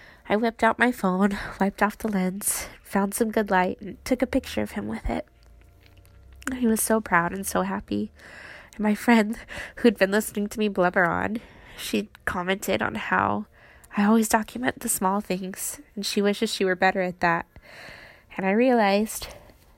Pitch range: 185-235 Hz